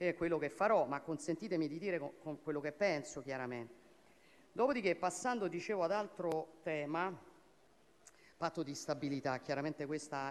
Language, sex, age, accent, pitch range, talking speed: Italian, female, 50-69, native, 140-175 Hz, 145 wpm